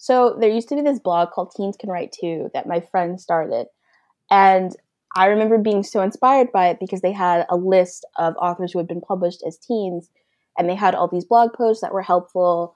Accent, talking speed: American, 220 wpm